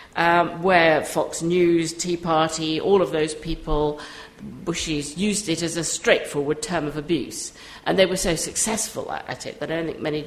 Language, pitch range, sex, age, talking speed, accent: English, 155-200 Hz, female, 50-69, 180 wpm, British